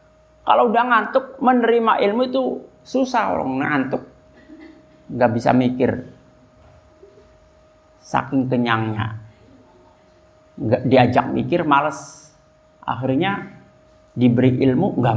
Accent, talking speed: native, 85 wpm